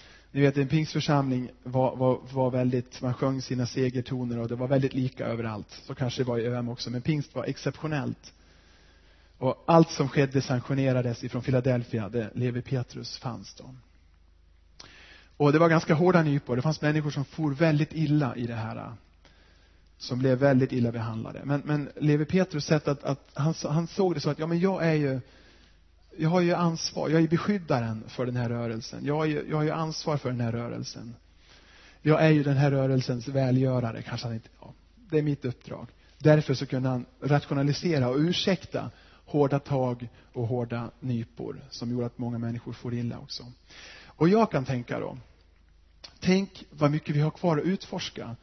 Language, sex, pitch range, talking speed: Swedish, male, 115-145 Hz, 185 wpm